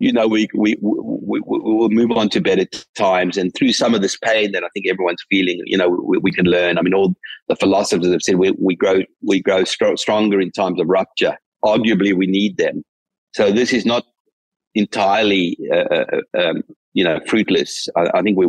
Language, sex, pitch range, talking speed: English, male, 95-120 Hz, 210 wpm